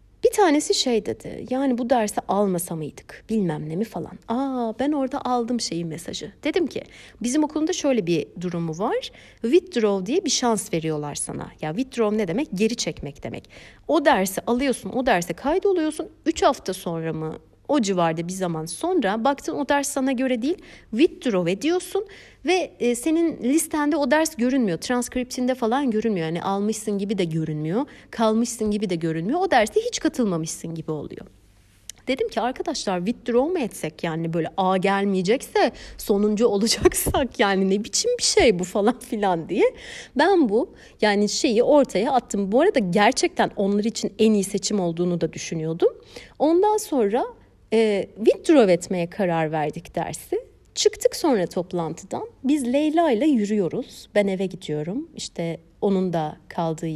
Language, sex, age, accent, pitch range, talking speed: Turkish, female, 60-79, native, 180-290 Hz, 155 wpm